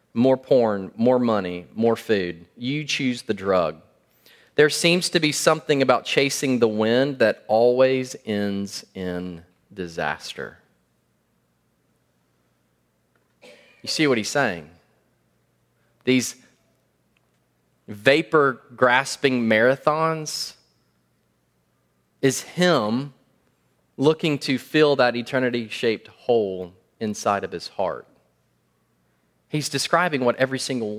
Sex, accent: male, American